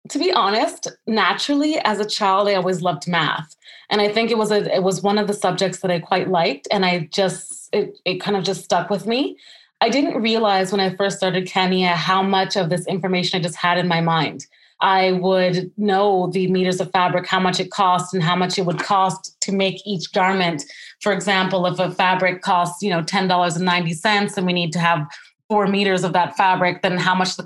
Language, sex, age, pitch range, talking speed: English, female, 20-39, 175-200 Hz, 220 wpm